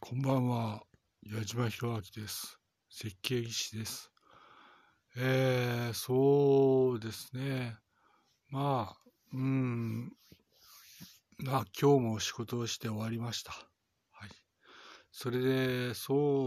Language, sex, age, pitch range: Japanese, male, 60-79, 110-135 Hz